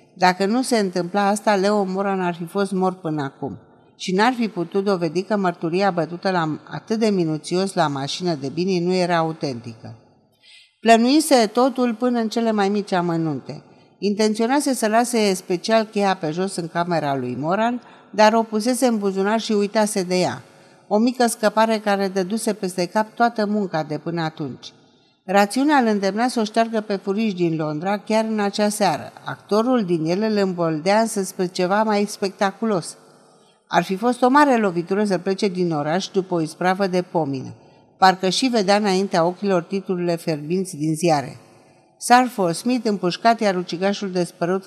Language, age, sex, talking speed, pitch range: Romanian, 50-69, female, 170 wpm, 175-220 Hz